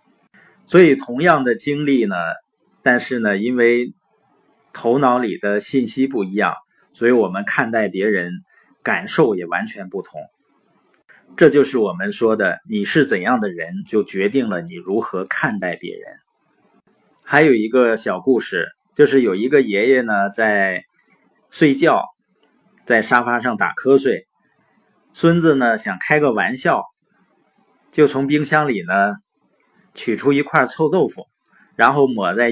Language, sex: Chinese, male